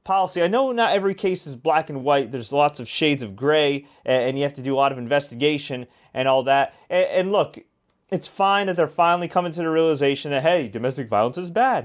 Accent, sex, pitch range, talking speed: American, male, 145-200 Hz, 230 wpm